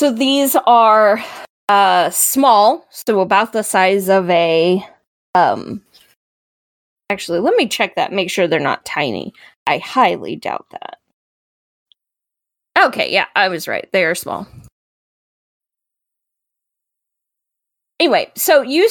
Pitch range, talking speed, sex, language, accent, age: 195-250 Hz, 115 wpm, female, English, American, 20-39